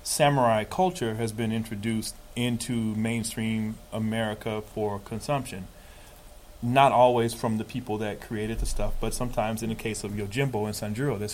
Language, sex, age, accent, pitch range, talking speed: English, male, 30-49, American, 105-115 Hz, 155 wpm